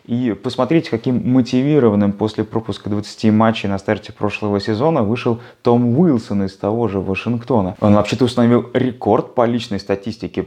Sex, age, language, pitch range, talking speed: male, 20-39, Russian, 100-125 Hz, 150 wpm